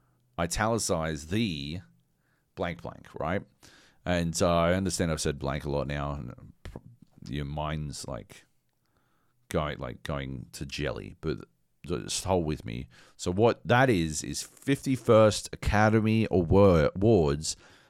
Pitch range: 75-100 Hz